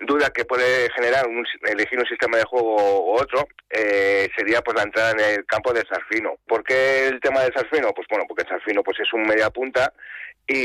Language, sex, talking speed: Spanish, male, 215 wpm